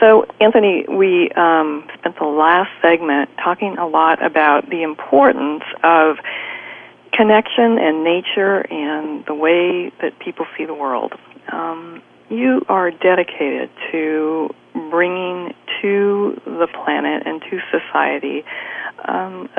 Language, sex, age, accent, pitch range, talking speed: English, female, 40-59, American, 155-195 Hz, 120 wpm